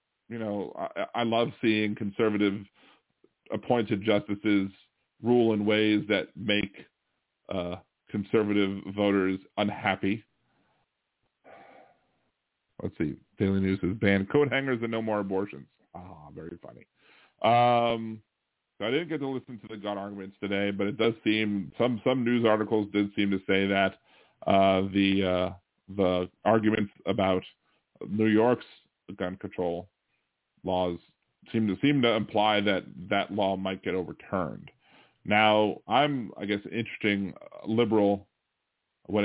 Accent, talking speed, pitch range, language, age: American, 140 wpm, 95-115 Hz, English, 40-59